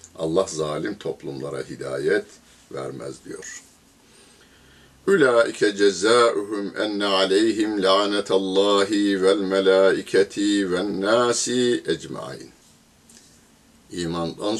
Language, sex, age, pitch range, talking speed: Turkish, male, 60-79, 80-105 Hz, 70 wpm